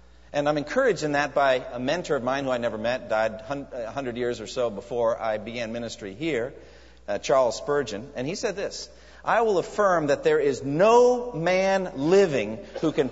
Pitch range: 120-190 Hz